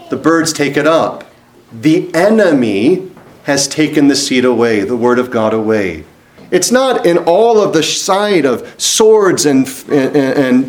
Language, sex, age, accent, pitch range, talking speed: English, male, 40-59, American, 145-230 Hz, 165 wpm